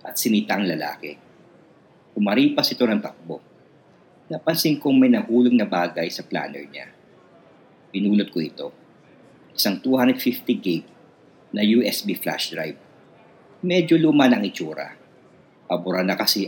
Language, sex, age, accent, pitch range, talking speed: Filipino, male, 50-69, native, 95-125 Hz, 125 wpm